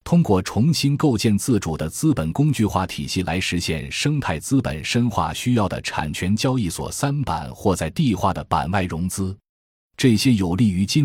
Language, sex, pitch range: Chinese, male, 80-115 Hz